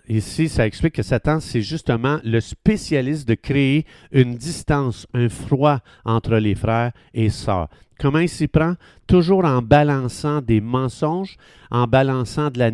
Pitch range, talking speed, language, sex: 110-145 Hz, 155 wpm, French, male